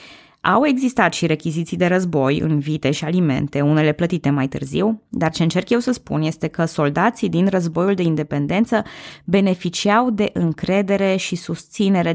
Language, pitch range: Romanian, 155-205 Hz